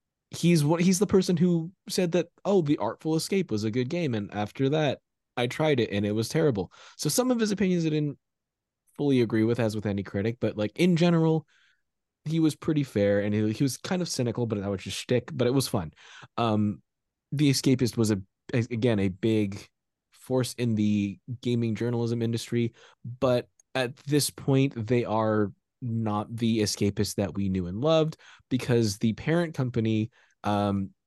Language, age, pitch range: English, 20-39, 105-140 Hz